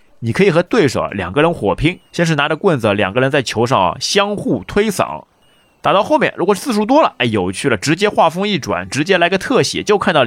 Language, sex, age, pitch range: Chinese, male, 30-49, 105-160 Hz